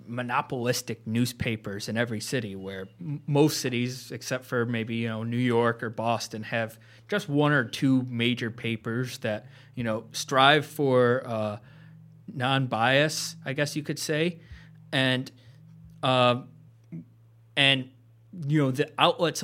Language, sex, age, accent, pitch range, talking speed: English, male, 30-49, American, 115-140 Hz, 135 wpm